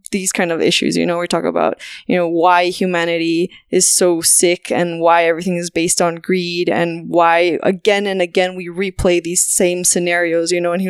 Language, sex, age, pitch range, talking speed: English, female, 20-39, 190-240 Hz, 205 wpm